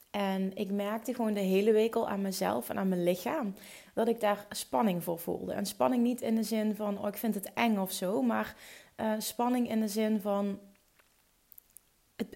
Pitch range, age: 200-240 Hz, 20-39